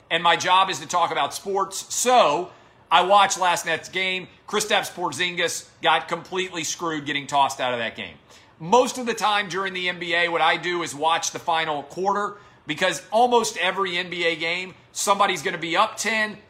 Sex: male